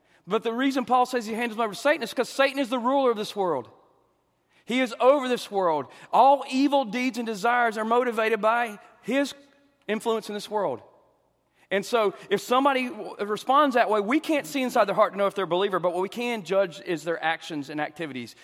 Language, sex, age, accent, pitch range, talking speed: English, male, 40-59, American, 145-220 Hz, 215 wpm